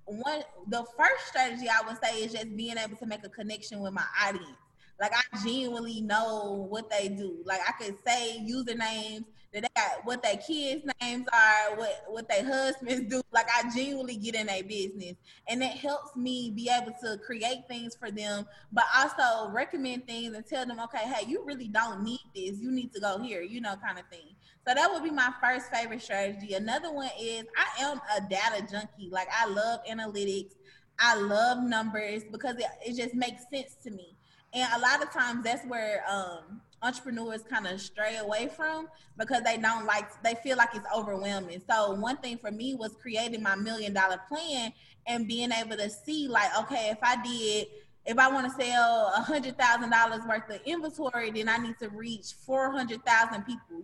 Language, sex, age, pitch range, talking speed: English, female, 20-39, 210-250 Hz, 195 wpm